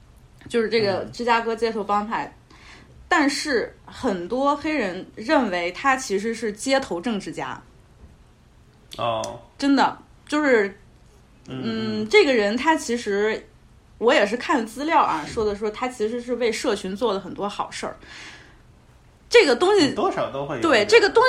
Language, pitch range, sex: Chinese, 210-290 Hz, female